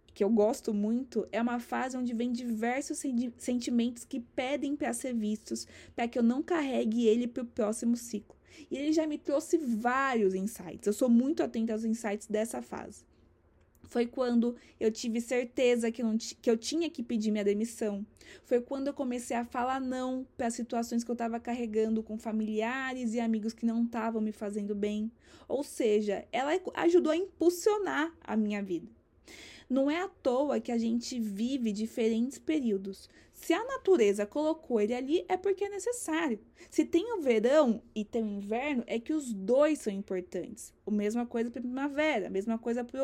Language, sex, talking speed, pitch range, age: Portuguese, female, 185 wpm, 225-290 Hz, 20-39